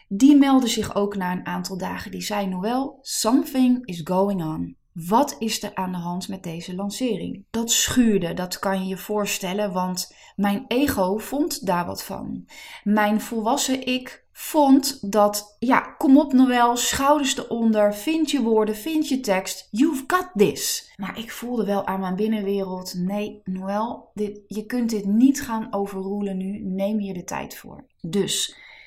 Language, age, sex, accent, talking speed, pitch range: Dutch, 20-39, female, Dutch, 165 wpm, 190-235 Hz